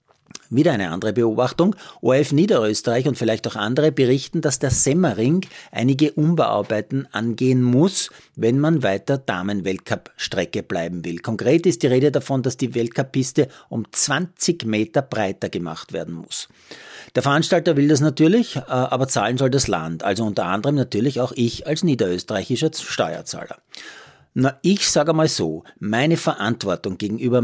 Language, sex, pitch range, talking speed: German, male, 110-145 Hz, 145 wpm